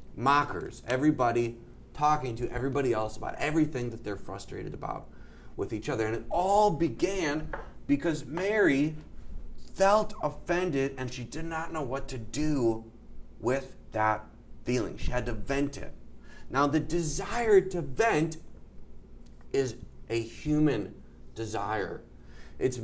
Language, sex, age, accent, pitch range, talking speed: English, male, 30-49, American, 115-155 Hz, 130 wpm